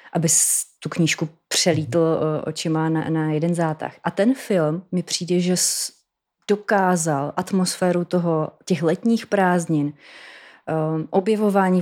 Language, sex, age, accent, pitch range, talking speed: Czech, female, 30-49, native, 165-195 Hz, 110 wpm